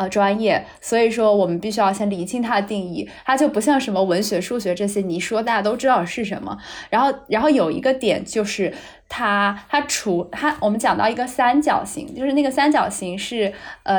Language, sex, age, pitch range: Chinese, female, 10-29, 195-265 Hz